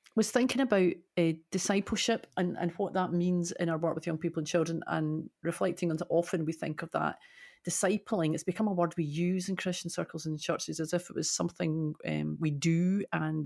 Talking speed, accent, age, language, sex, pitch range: 215 wpm, British, 40-59, English, female, 155-185 Hz